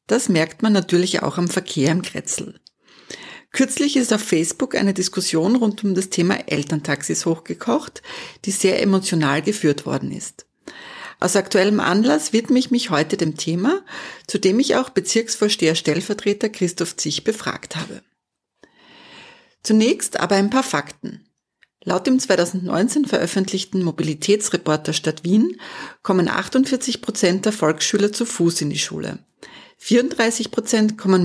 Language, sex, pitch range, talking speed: German, female, 170-225 Hz, 130 wpm